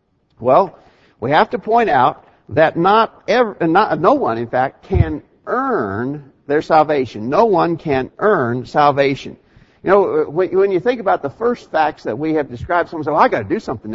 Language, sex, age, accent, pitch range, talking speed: English, male, 50-69, American, 145-230 Hz, 190 wpm